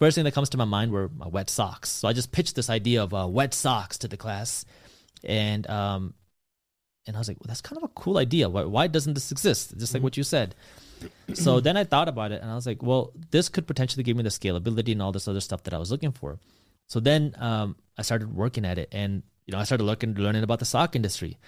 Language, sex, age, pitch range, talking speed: English, male, 20-39, 100-130 Hz, 265 wpm